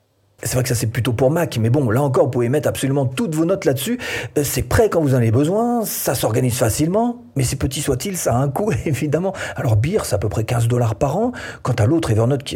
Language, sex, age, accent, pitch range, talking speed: French, male, 40-59, French, 115-155 Hz, 260 wpm